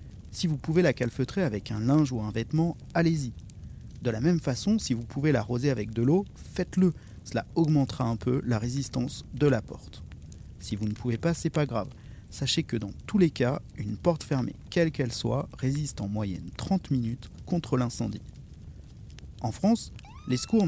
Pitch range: 110-155 Hz